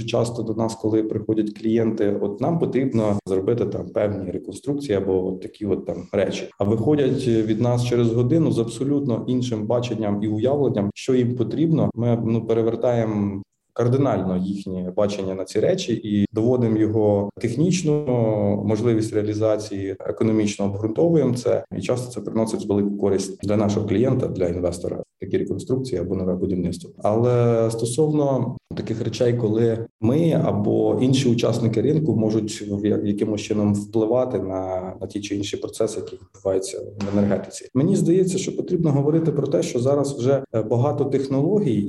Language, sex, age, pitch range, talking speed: Ukrainian, male, 20-39, 105-140 Hz, 150 wpm